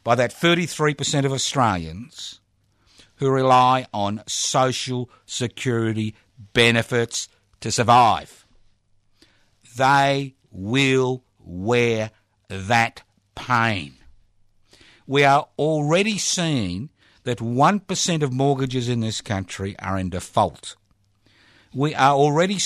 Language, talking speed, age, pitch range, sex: English, 95 wpm, 50-69, 100-140 Hz, male